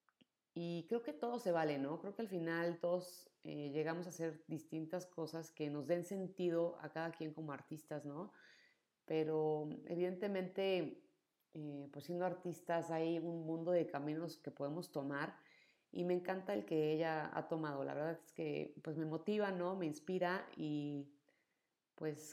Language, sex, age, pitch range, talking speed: Spanish, female, 30-49, 150-185 Hz, 165 wpm